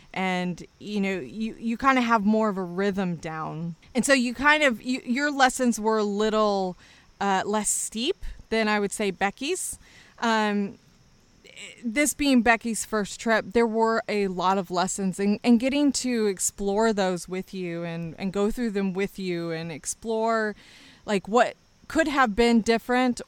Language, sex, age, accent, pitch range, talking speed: English, female, 20-39, American, 190-230 Hz, 170 wpm